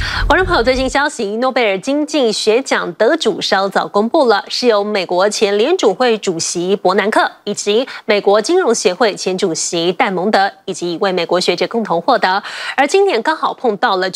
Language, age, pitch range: Chinese, 20-39, 200-295 Hz